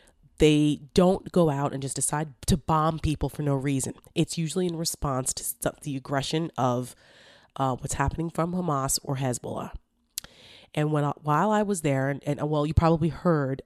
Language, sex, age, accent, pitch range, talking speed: English, female, 30-49, American, 135-155 Hz, 180 wpm